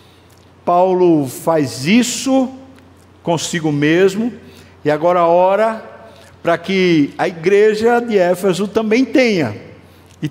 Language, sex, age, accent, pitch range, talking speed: Portuguese, male, 60-79, Brazilian, 130-180 Hz, 100 wpm